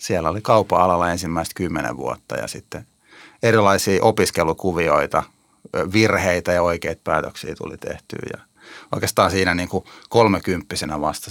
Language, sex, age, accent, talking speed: Finnish, male, 30-49, native, 125 wpm